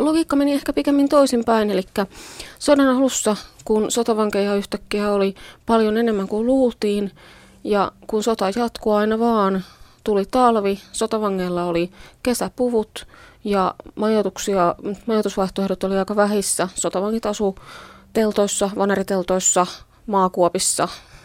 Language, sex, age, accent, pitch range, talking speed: Finnish, female, 30-49, native, 185-225 Hz, 105 wpm